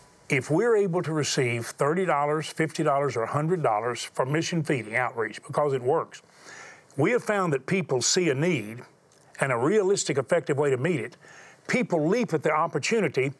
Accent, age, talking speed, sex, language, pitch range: American, 40-59, 165 wpm, male, English, 140-190 Hz